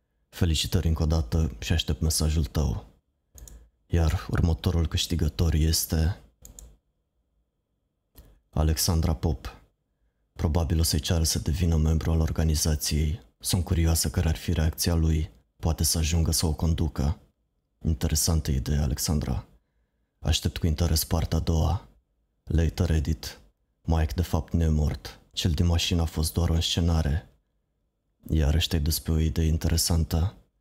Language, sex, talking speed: Romanian, male, 130 wpm